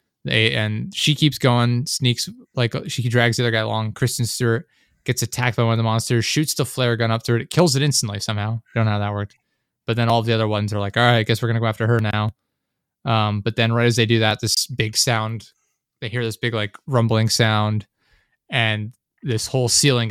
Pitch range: 110-120 Hz